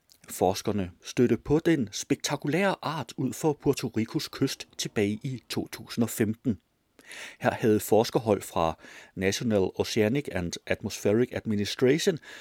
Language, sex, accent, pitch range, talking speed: Danish, male, native, 110-185 Hz, 110 wpm